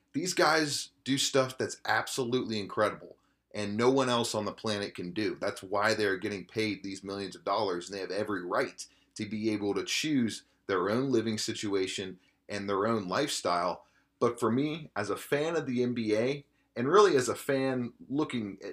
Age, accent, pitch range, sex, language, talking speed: 30-49, American, 100-135 Hz, male, English, 190 wpm